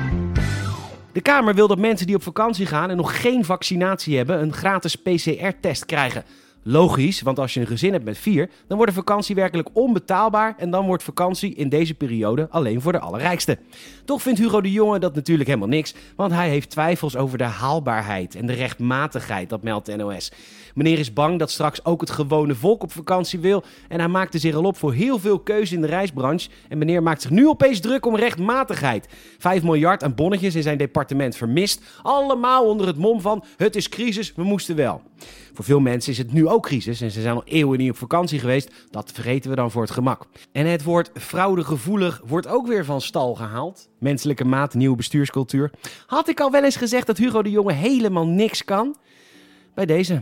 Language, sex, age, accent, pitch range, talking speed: Dutch, male, 30-49, Dutch, 130-200 Hz, 205 wpm